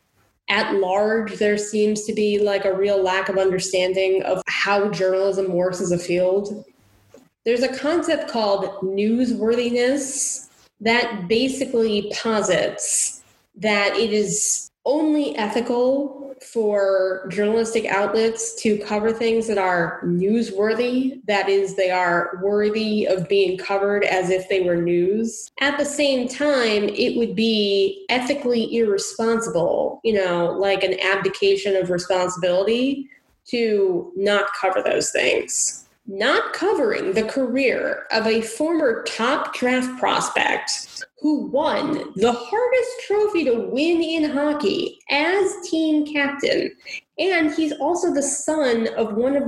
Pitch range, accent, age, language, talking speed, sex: 200-275 Hz, American, 20-39, English, 125 wpm, female